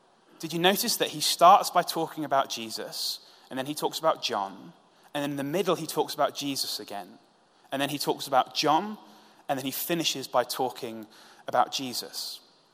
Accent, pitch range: British, 135-175 Hz